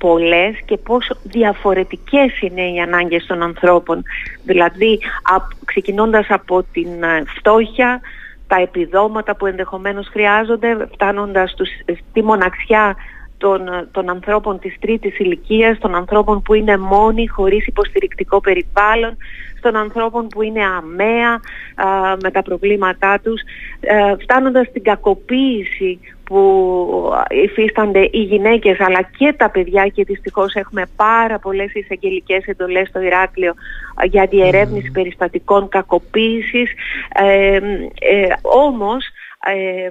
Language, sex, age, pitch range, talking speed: Greek, female, 30-49, 190-225 Hz, 110 wpm